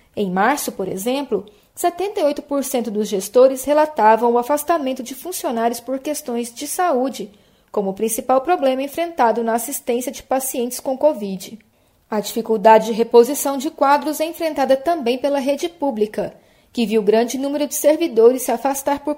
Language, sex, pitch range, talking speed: Portuguese, female, 220-285 Hz, 150 wpm